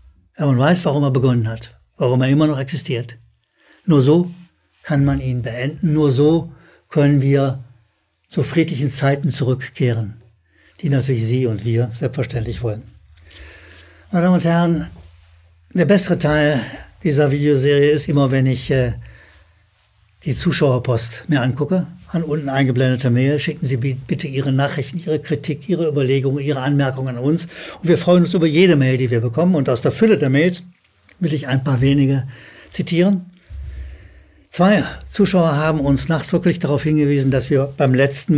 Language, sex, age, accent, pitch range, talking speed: German, male, 60-79, German, 125-150 Hz, 155 wpm